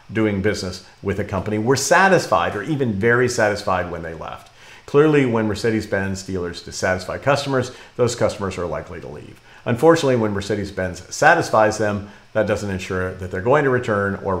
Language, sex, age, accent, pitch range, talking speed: English, male, 50-69, American, 100-130 Hz, 165 wpm